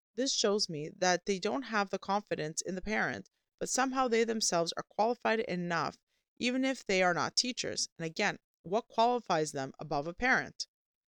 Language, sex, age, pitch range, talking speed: English, female, 30-49, 175-245 Hz, 180 wpm